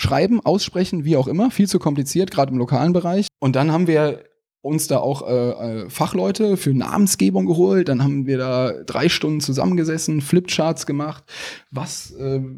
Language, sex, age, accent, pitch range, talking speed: German, male, 10-29, German, 120-155 Hz, 160 wpm